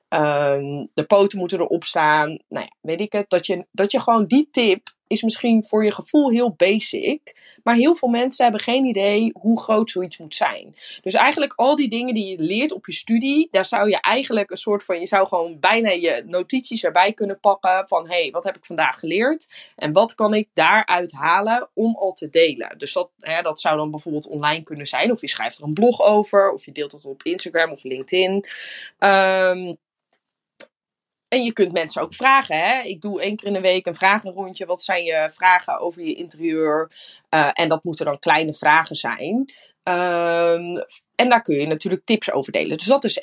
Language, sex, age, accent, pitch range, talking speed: Dutch, female, 20-39, Dutch, 170-235 Hz, 205 wpm